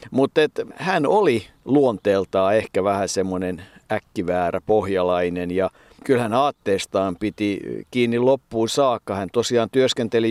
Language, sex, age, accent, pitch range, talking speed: Finnish, male, 50-69, native, 105-125 Hz, 110 wpm